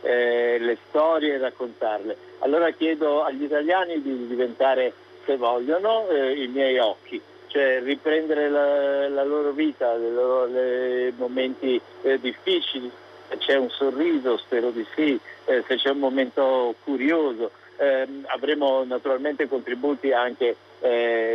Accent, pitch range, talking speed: native, 125-150 Hz, 130 wpm